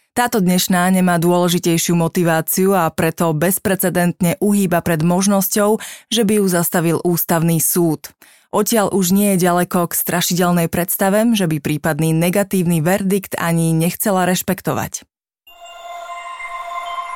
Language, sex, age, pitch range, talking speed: Slovak, female, 20-39, 175-200 Hz, 115 wpm